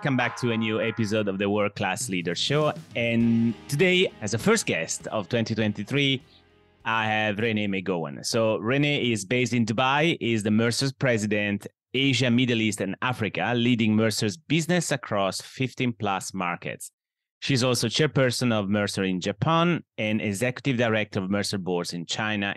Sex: male